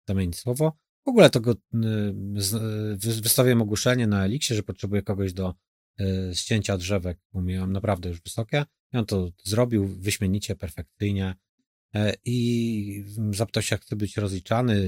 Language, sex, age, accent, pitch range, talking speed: Polish, male, 30-49, native, 95-115 Hz, 150 wpm